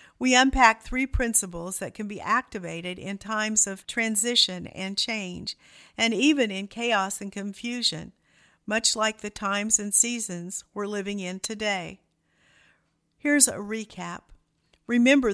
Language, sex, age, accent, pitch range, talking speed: English, female, 50-69, American, 190-230 Hz, 135 wpm